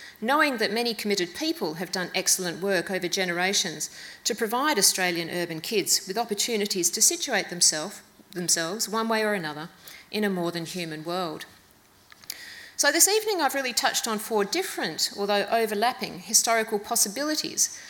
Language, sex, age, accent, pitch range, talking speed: English, female, 40-59, Australian, 170-220 Hz, 140 wpm